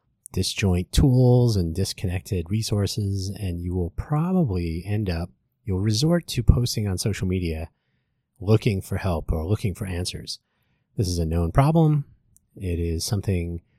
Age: 30-49